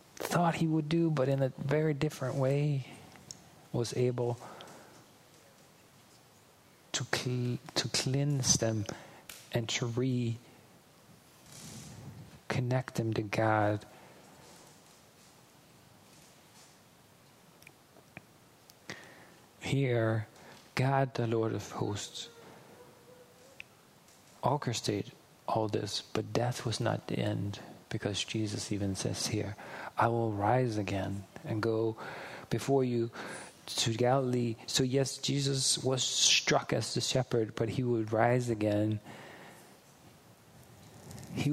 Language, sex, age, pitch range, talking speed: English, male, 40-59, 115-145 Hz, 100 wpm